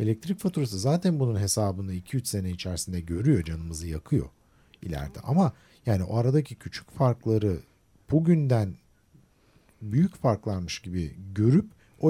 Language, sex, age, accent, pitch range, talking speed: Turkish, male, 50-69, native, 90-125 Hz, 120 wpm